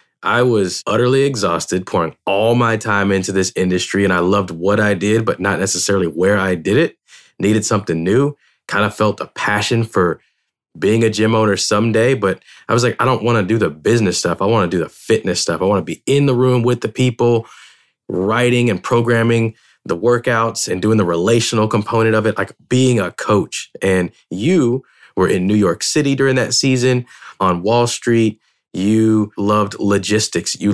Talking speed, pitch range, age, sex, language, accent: 195 wpm, 95-115 Hz, 20-39, male, English, American